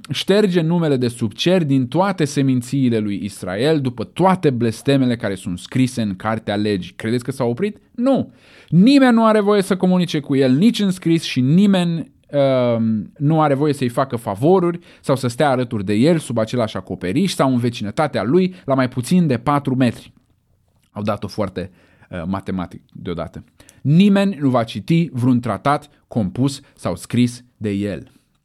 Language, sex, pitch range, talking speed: Romanian, male, 110-155 Hz, 165 wpm